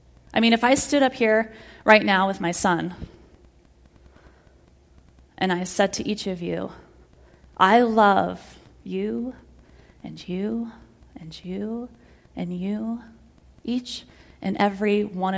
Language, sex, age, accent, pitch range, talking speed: English, female, 30-49, American, 175-225 Hz, 125 wpm